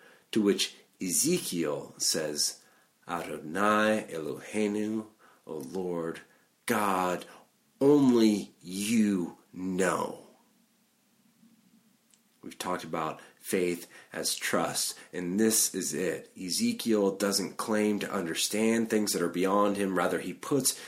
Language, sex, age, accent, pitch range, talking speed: English, male, 40-59, American, 90-130 Hz, 100 wpm